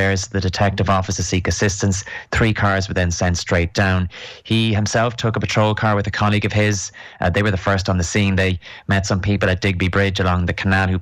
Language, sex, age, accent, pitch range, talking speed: English, male, 20-39, Irish, 95-100 Hz, 230 wpm